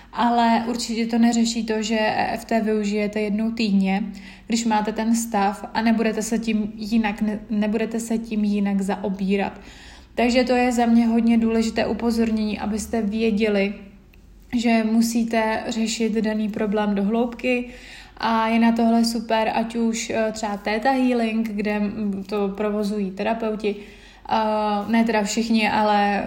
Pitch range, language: 210-225 Hz, Czech